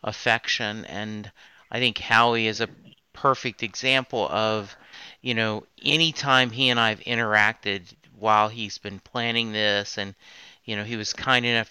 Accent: American